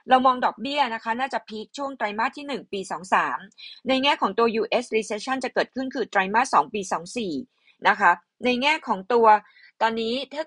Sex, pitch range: female, 205-250 Hz